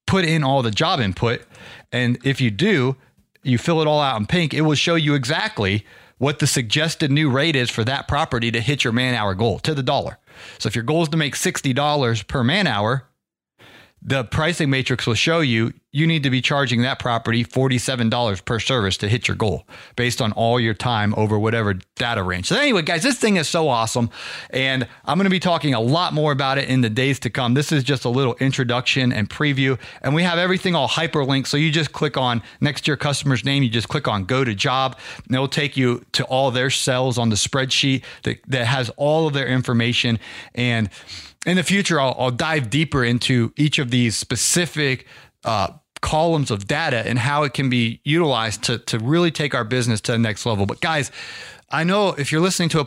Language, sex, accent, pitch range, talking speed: English, male, American, 120-150 Hz, 220 wpm